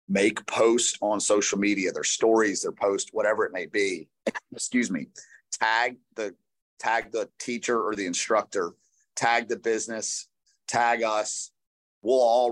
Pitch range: 105-145 Hz